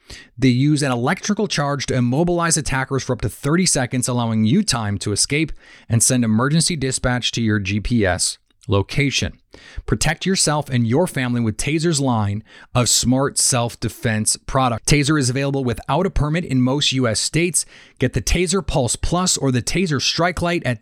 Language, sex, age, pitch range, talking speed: English, male, 30-49, 110-140 Hz, 170 wpm